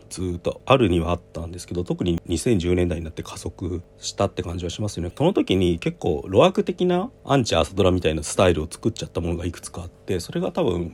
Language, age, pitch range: Japanese, 40-59, 85-105 Hz